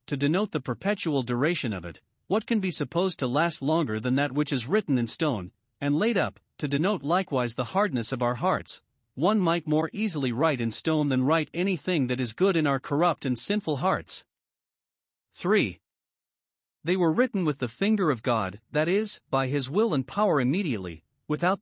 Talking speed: 190 wpm